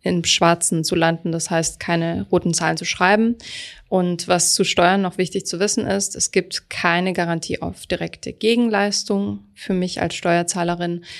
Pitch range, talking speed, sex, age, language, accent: 170-190 Hz, 165 wpm, female, 20-39, German, German